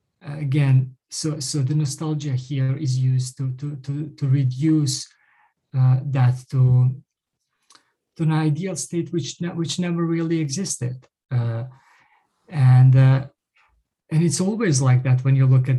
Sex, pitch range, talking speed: male, 130-155 Hz, 145 wpm